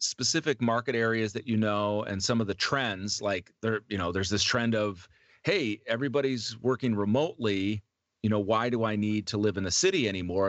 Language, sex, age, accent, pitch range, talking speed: English, male, 40-59, American, 100-125 Hz, 200 wpm